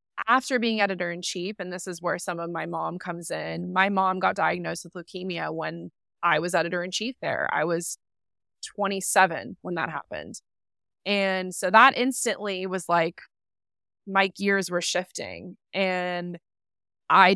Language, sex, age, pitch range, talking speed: English, female, 20-39, 170-200 Hz, 160 wpm